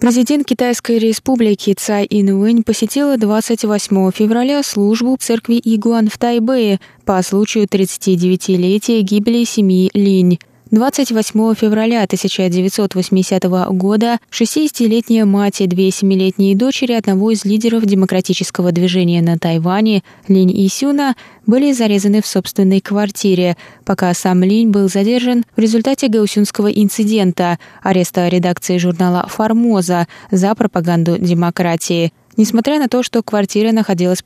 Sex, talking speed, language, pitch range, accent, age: female, 115 wpm, Russian, 180-225 Hz, native, 20-39